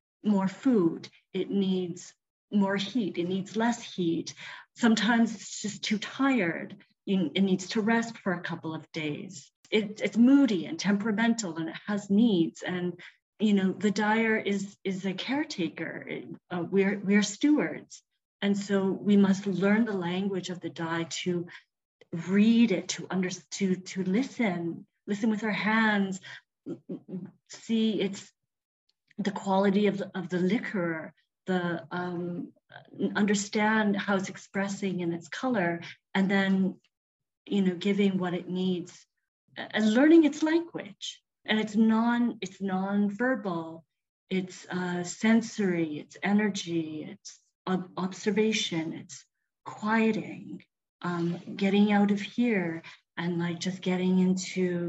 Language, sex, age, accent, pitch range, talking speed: English, female, 30-49, American, 180-215 Hz, 130 wpm